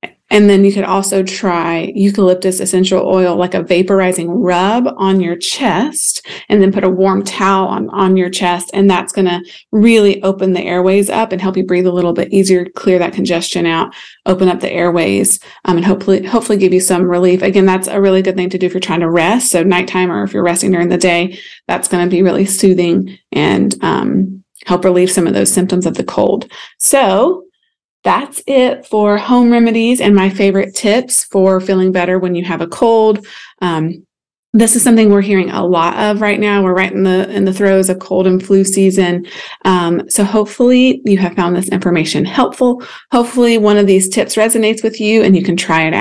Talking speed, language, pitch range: 210 wpm, English, 180-210 Hz